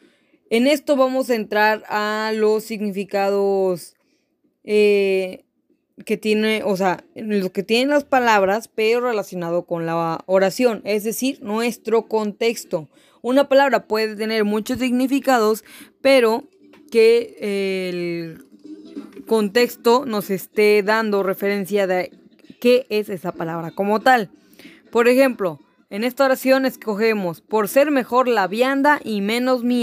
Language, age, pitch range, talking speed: Spanish, 20-39, 205-265 Hz, 125 wpm